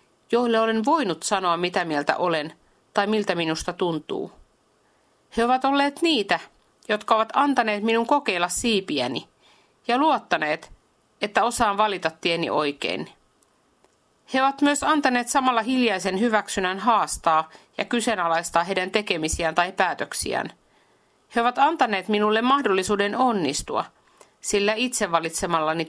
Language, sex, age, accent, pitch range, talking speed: Finnish, female, 50-69, native, 180-245 Hz, 120 wpm